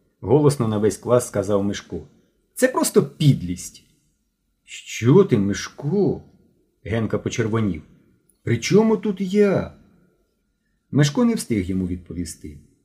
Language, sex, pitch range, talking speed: Ukrainian, male, 90-130 Hz, 105 wpm